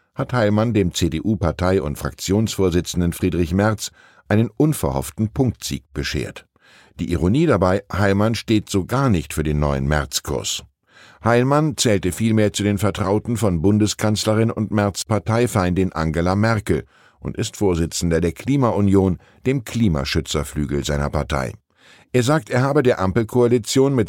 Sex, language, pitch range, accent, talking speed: male, German, 85-115 Hz, German, 130 wpm